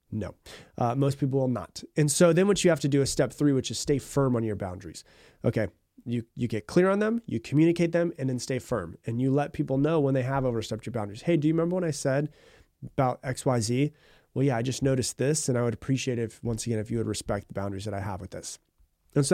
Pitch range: 125-170 Hz